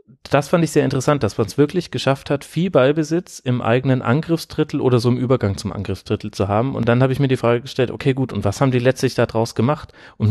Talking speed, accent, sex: 250 wpm, German, male